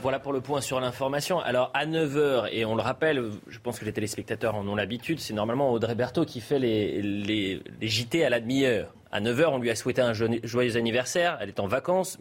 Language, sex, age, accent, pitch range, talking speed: French, male, 30-49, French, 105-130 Hz, 225 wpm